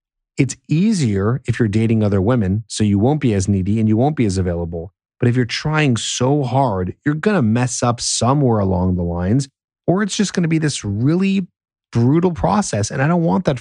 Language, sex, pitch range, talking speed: English, male, 95-135 Hz, 215 wpm